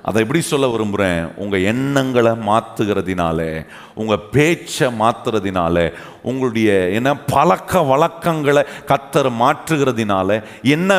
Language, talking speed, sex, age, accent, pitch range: Tamil, 95 wpm, male, 40-59, native, 115-185 Hz